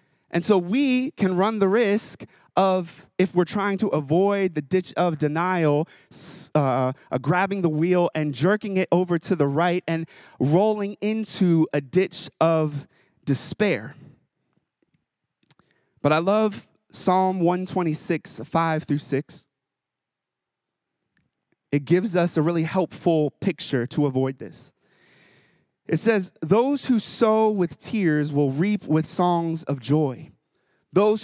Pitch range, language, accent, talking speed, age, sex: 155-195 Hz, English, American, 130 wpm, 30-49, male